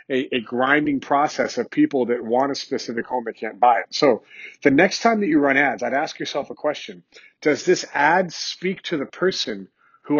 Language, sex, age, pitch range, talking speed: English, male, 40-59, 120-150 Hz, 210 wpm